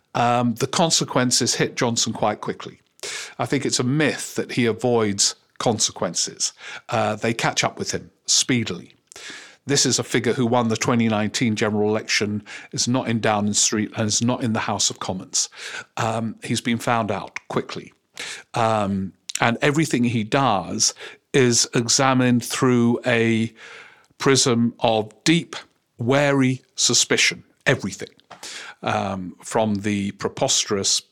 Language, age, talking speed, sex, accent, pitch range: English, 50-69, 135 wpm, male, British, 110-130 Hz